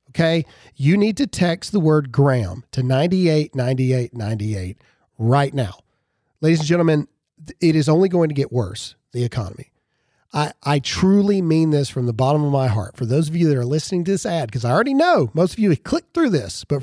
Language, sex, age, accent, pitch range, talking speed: English, male, 40-59, American, 130-175 Hz, 210 wpm